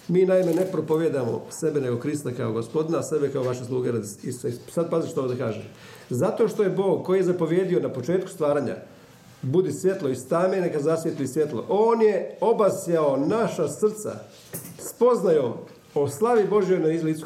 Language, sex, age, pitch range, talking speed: Croatian, male, 50-69, 145-205 Hz, 165 wpm